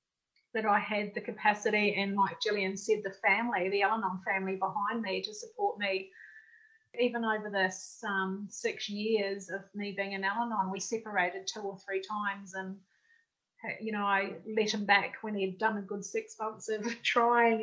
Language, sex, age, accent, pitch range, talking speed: English, female, 30-49, Australian, 200-245 Hz, 180 wpm